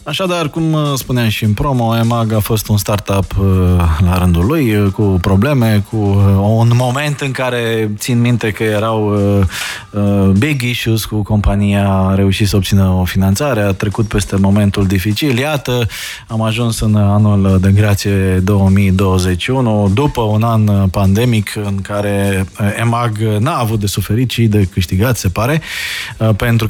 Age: 20-39